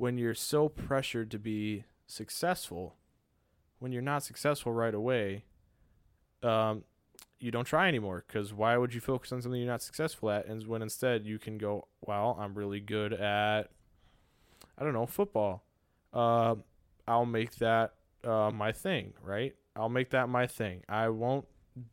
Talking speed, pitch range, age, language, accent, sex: 160 wpm, 100-125 Hz, 20-39, English, American, male